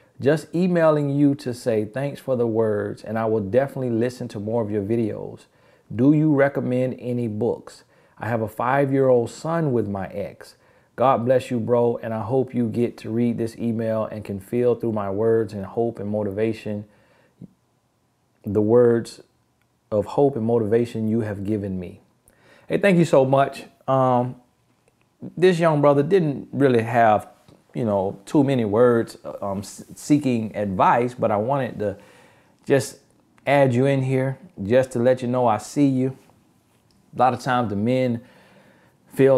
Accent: American